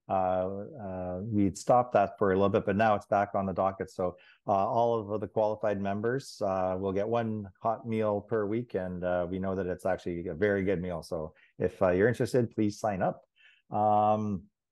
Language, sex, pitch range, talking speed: English, male, 95-110 Hz, 210 wpm